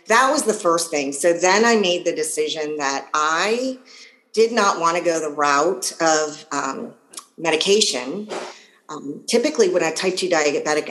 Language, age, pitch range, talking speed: English, 40-59, 145-175 Hz, 160 wpm